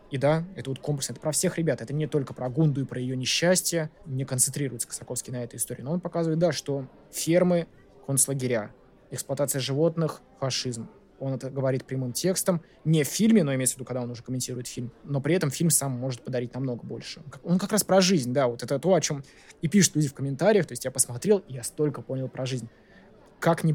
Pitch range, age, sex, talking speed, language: 130-160 Hz, 20-39, male, 225 wpm, Russian